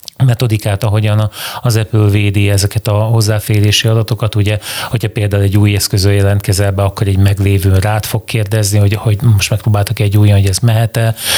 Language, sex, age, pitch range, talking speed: Hungarian, male, 30-49, 100-115 Hz, 170 wpm